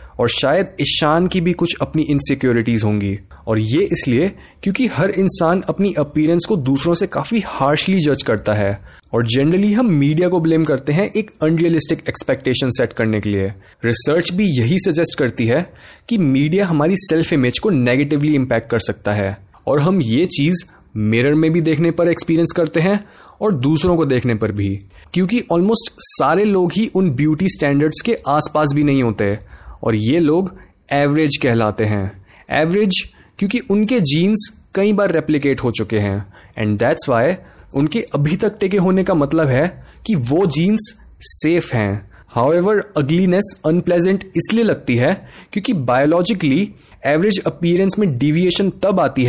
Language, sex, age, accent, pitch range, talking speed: Hindi, male, 20-39, native, 125-185 Hz, 135 wpm